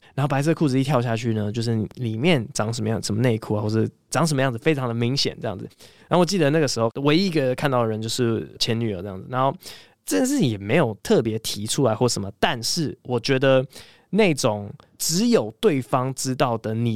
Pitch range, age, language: 115-150 Hz, 20-39, Chinese